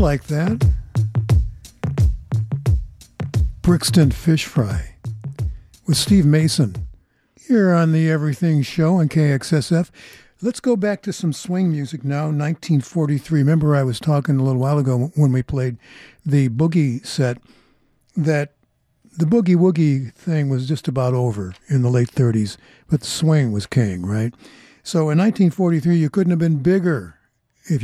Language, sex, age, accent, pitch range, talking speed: English, male, 60-79, American, 125-165 Hz, 140 wpm